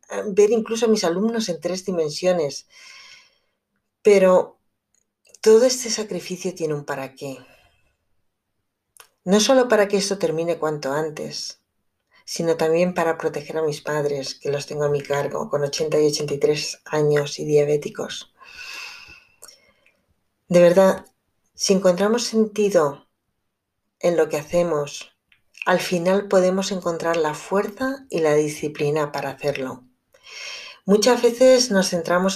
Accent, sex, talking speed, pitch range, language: Spanish, female, 125 wpm, 150-195 Hz, Spanish